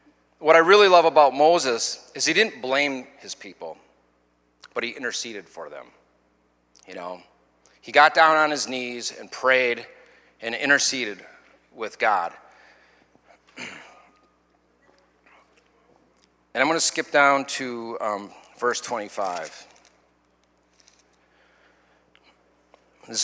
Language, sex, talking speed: English, male, 110 wpm